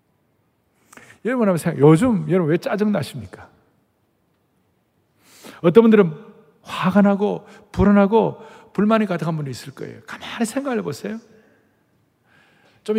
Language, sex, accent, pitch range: Korean, male, native, 150-225 Hz